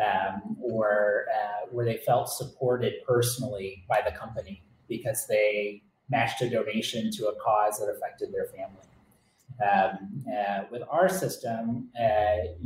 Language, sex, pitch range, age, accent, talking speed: English, male, 115-145 Hz, 30-49, American, 140 wpm